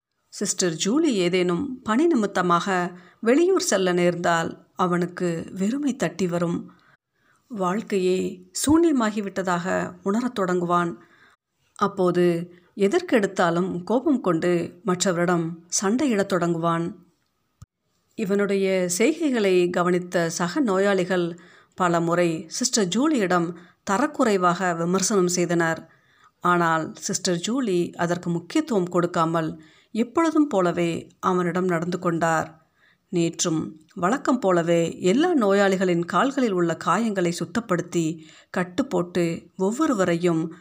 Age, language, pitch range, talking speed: 50-69, Tamil, 170-205 Hz, 85 wpm